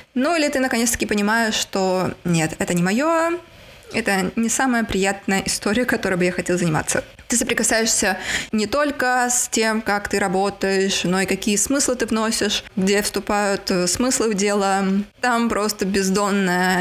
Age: 20-39